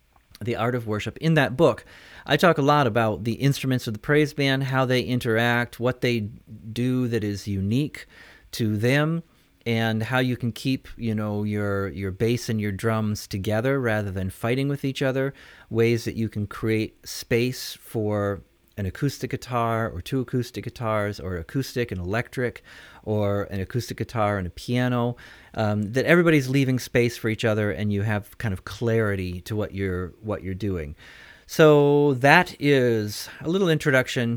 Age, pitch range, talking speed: 40-59, 100-130 Hz, 175 wpm